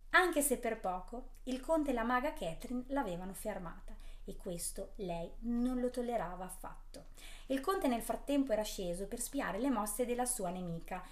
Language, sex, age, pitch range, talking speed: Italian, female, 30-49, 180-250 Hz, 175 wpm